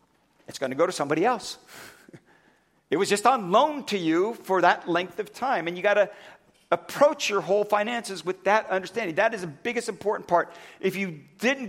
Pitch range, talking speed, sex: 175-225 Hz, 200 wpm, male